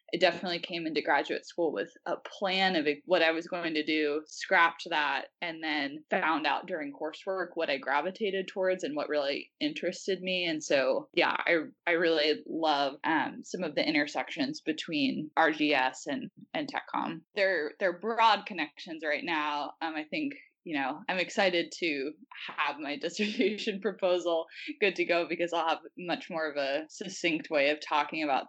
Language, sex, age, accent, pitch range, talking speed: English, female, 20-39, American, 155-210 Hz, 175 wpm